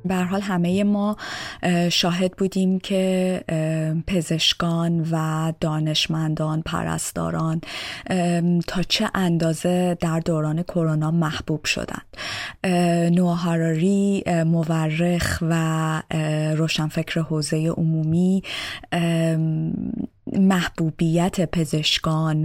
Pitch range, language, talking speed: 155-180 Hz, English, 70 wpm